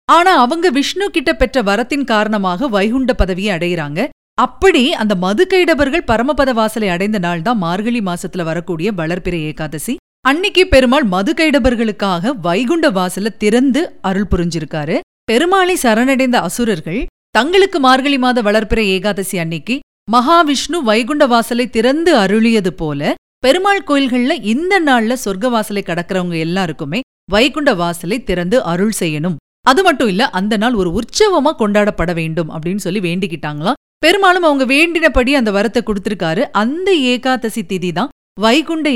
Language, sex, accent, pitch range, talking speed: Tamil, female, native, 190-280 Hz, 125 wpm